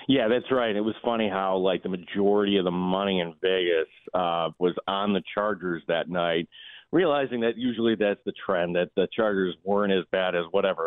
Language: English